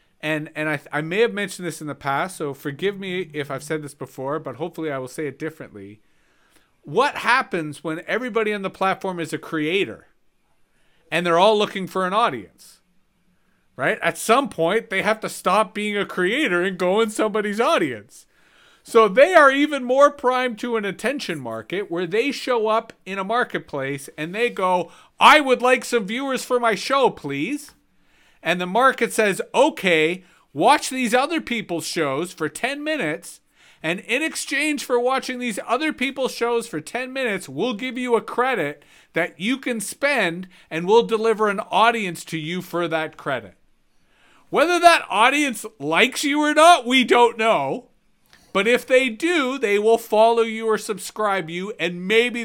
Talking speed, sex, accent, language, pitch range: 175 wpm, male, American, English, 165-245 Hz